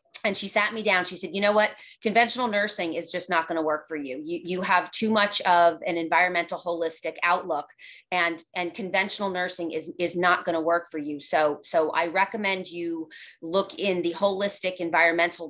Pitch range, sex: 170-210 Hz, female